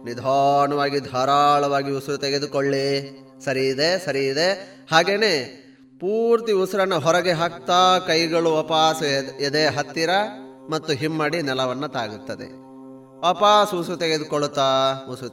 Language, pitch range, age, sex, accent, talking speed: Kannada, 130-155 Hz, 20-39, male, native, 100 wpm